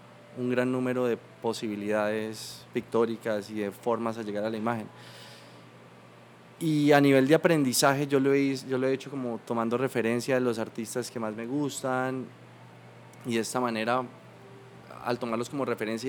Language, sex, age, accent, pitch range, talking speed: Spanish, male, 20-39, Colombian, 115-135 Hz, 165 wpm